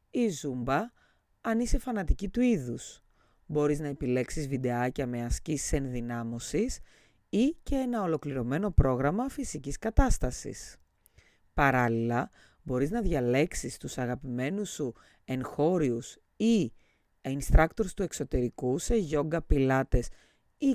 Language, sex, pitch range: Greek, female, 120-195 Hz